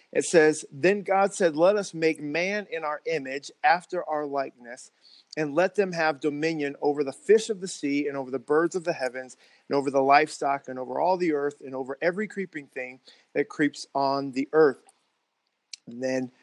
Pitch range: 140-165 Hz